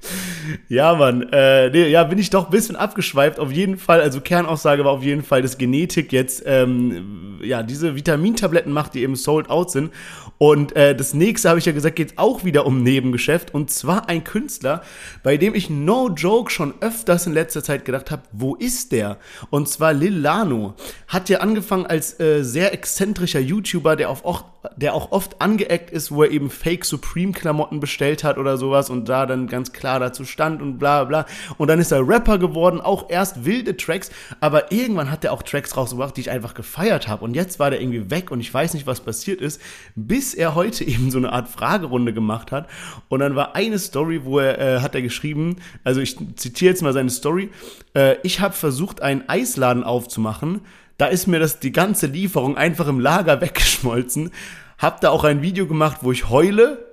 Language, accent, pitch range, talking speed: German, German, 135-180 Hz, 205 wpm